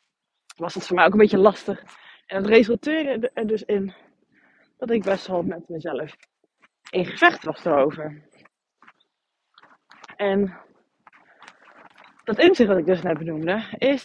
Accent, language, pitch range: Dutch, Dutch, 180-235 Hz